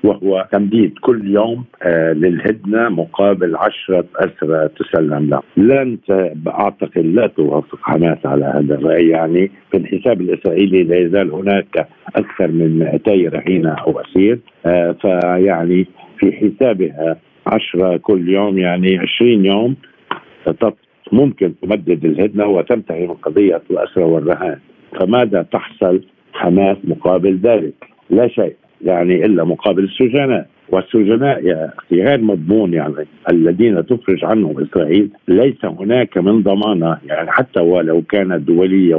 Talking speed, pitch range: 120 wpm, 85-100 Hz